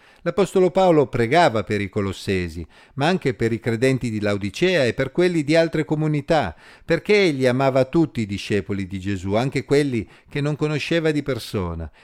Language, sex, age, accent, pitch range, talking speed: Italian, male, 50-69, native, 105-150 Hz, 170 wpm